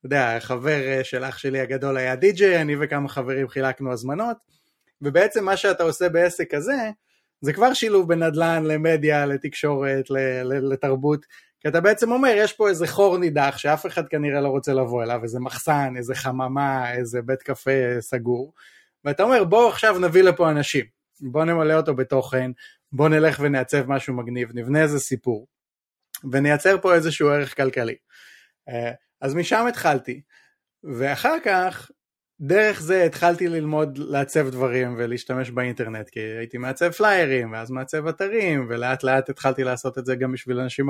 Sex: male